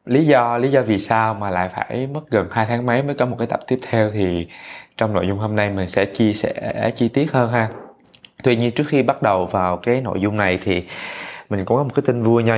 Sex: male